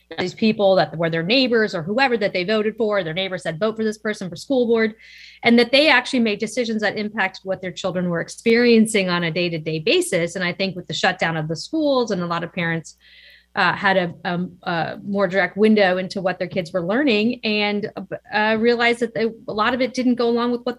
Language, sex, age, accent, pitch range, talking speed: English, female, 30-49, American, 175-225 Hz, 230 wpm